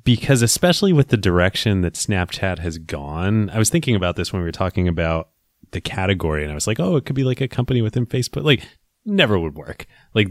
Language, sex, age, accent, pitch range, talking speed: English, male, 30-49, American, 85-115 Hz, 225 wpm